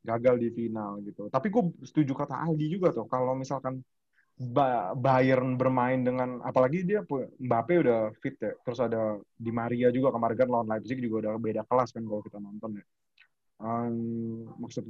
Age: 20-39